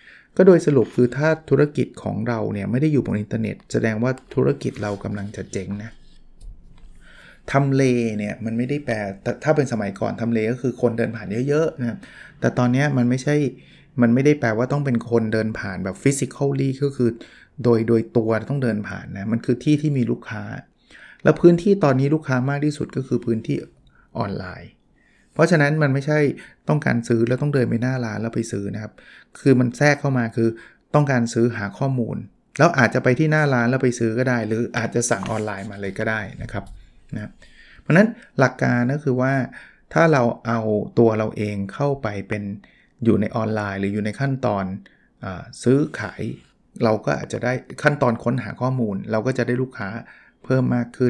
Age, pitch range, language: 20-39, 110-135 Hz, Thai